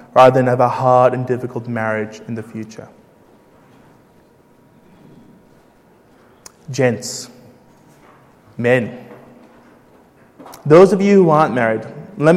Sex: male